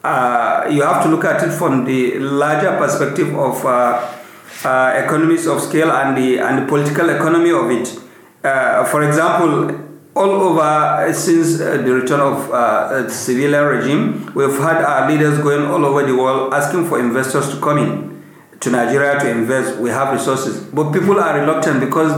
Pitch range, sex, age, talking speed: 140-170 Hz, male, 50-69, 180 wpm